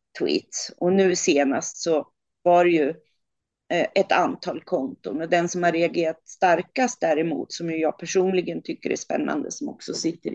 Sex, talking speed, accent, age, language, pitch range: female, 155 wpm, native, 40-59, Swedish, 160-200 Hz